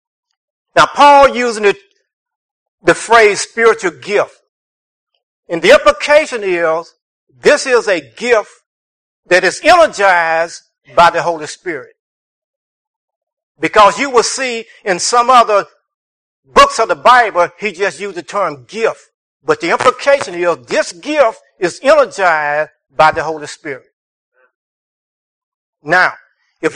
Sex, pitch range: male, 175-280 Hz